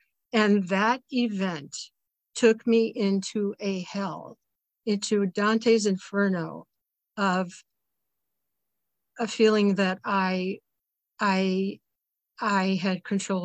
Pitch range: 185-215 Hz